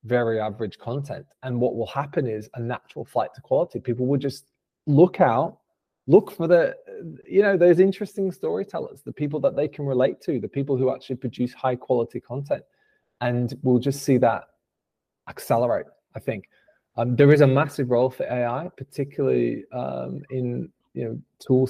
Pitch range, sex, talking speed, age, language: 115-145 Hz, male, 175 wpm, 20-39, English